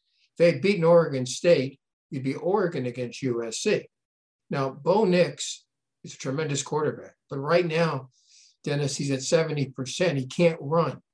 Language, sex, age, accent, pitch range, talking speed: English, male, 60-79, American, 130-165 Hz, 150 wpm